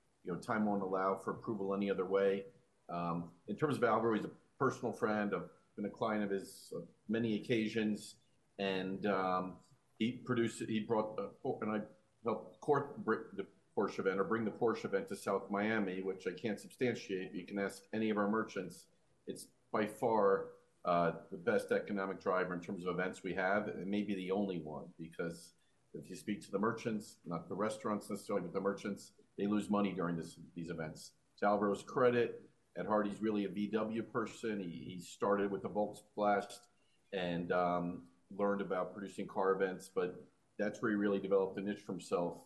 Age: 40-59